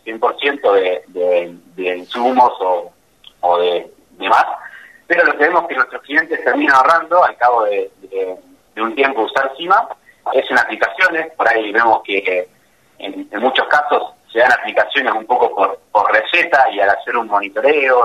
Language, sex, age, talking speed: Spanish, male, 30-49, 175 wpm